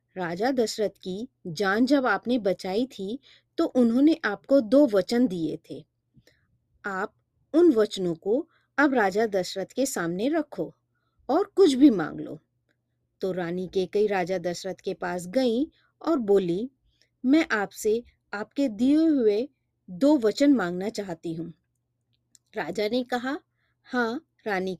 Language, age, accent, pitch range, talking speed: Hindi, 30-49, native, 180-255 Hz, 135 wpm